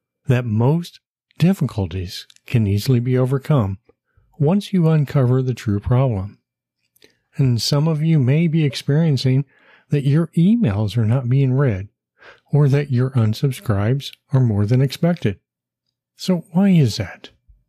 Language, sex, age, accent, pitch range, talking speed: English, male, 50-69, American, 110-150 Hz, 130 wpm